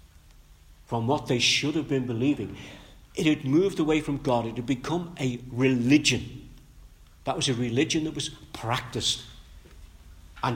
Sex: male